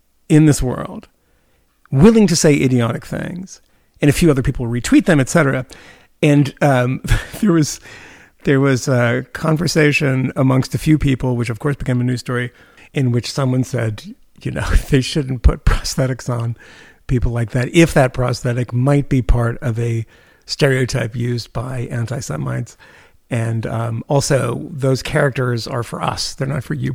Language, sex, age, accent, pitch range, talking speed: English, male, 50-69, American, 120-145 Hz, 165 wpm